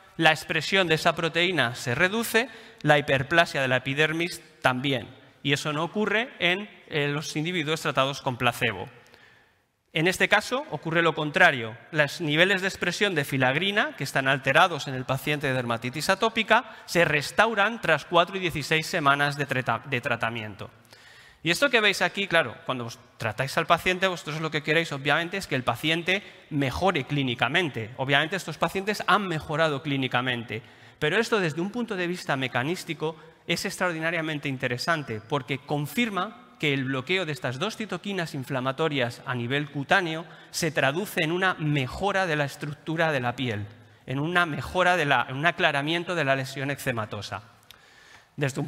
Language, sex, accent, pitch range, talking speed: Spanish, male, Spanish, 135-180 Hz, 160 wpm